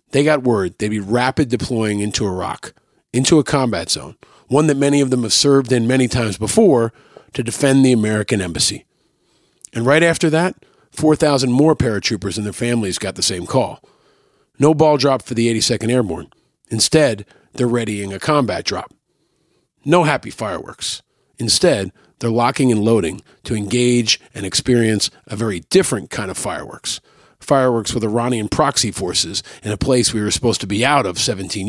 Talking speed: 170 wpm